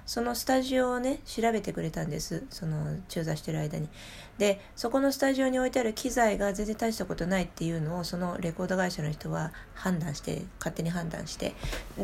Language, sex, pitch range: Japanese, female, 160-215 Hz